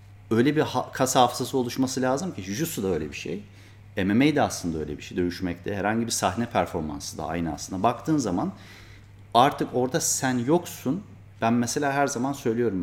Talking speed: 170 wpm